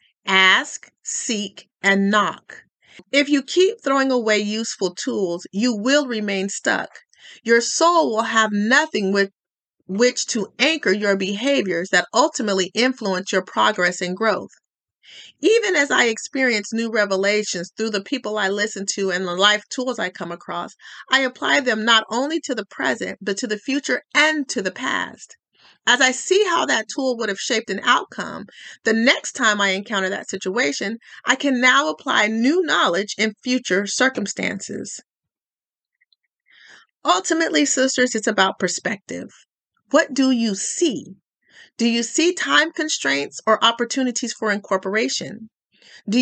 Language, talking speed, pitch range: English, 150 wpm, 200-270 Hz